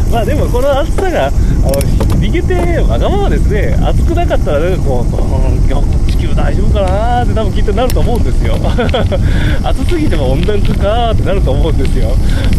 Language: Japanese